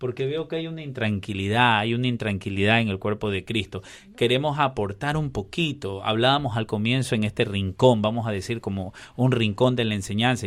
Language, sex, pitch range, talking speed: English, male, 105-135 Hz, 190 wpm